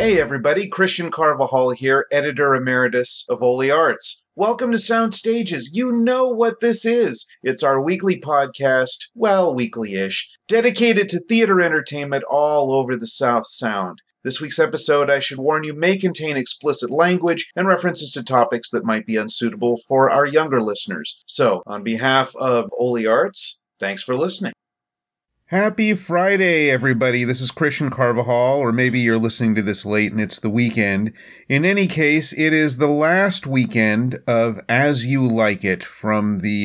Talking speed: 160 wpm